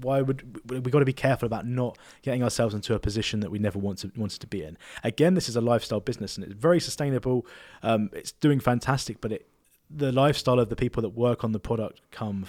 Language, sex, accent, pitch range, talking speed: English, male, British, 110-145 Hz, 230 wpm